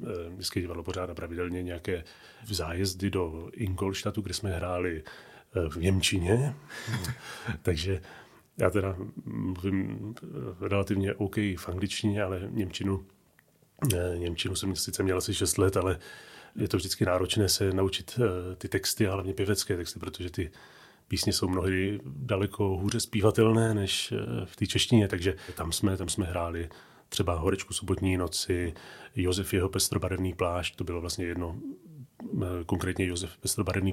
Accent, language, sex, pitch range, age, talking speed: native, Czech, male, 90-105 Hz, 30-49, 135 wpm